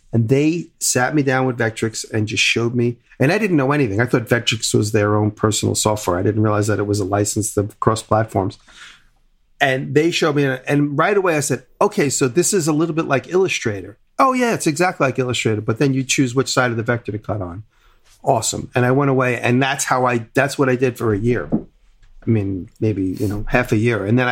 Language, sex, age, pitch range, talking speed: English, male, 40-59, 110-135 Hz, 235 wpm